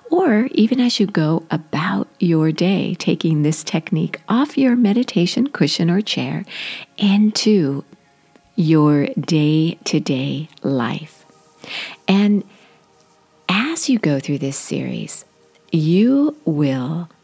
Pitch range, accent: 155-225 Hz, American